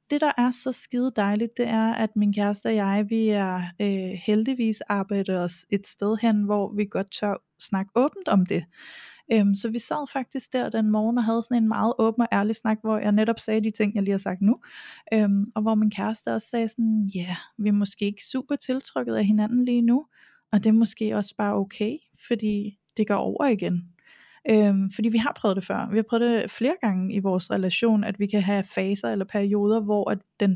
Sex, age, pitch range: female, 20-39, 200-230 Hz